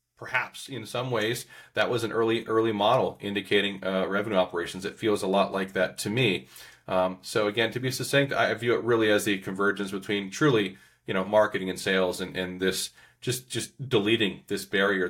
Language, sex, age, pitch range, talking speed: English, male, 30-49, 95-110 Hz, 200 wpm